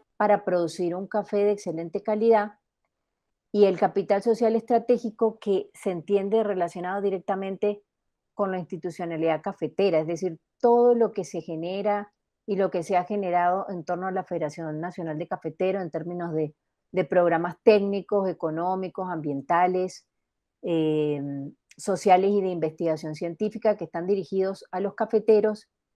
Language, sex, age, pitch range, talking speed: Spanish, female, 30-49, 175-215 Hz, 145 wpm